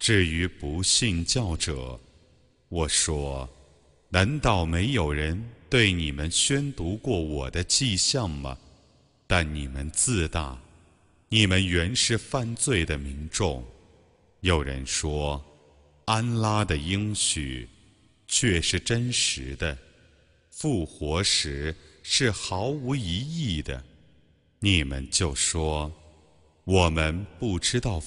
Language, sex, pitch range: Arabic, male, 75-105 Hz